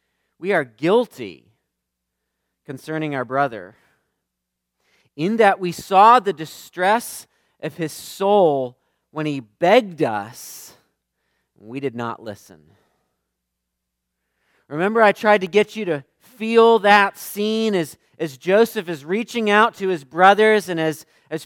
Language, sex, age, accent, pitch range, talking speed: English, male, 40-59, American, 135-205 Hz, 130 wpm